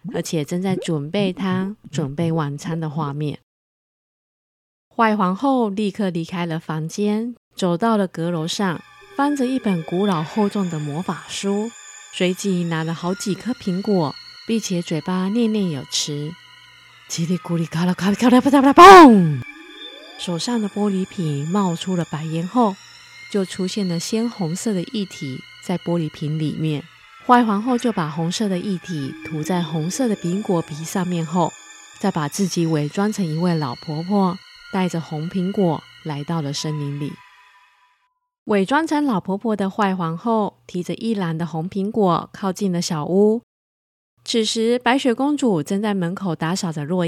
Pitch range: 165-210 Hz